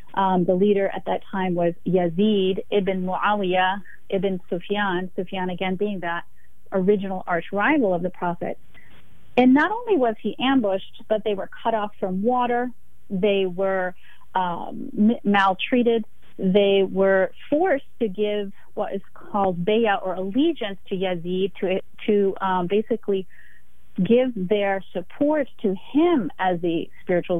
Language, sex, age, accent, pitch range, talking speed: English, female, 40-59, American, 185-210 Hz, 140 wpm